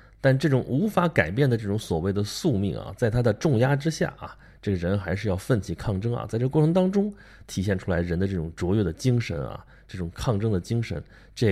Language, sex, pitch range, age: Chinese, male, 95-130 Hz, 20-39